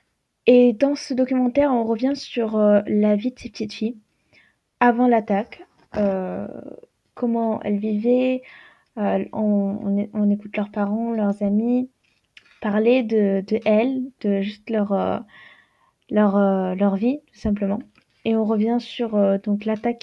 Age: 20-39